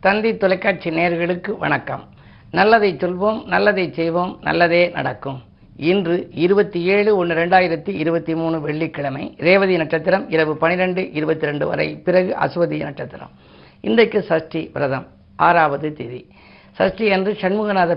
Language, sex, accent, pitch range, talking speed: Tamil, female, native, 150-185 Hz, 120 wpm